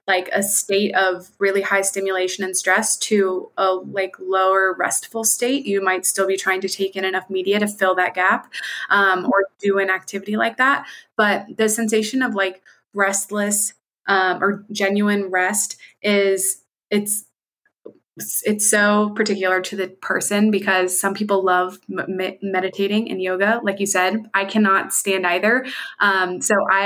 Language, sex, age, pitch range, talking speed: English, female, 20-39, 190-205 Hz, 160 wpm